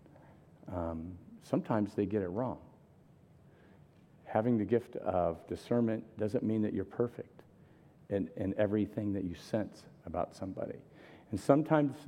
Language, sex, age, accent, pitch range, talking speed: English, male, 50-69, American, 110-165 Hz, 130 wpm